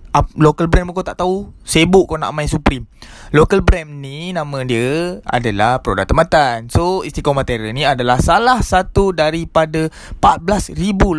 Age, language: 20-39, Malay